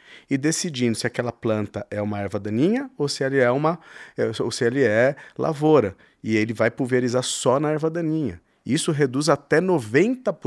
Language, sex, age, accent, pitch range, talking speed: Portuguese, male, 40-59, Brazilian, 110-150 Hz, 155 wpm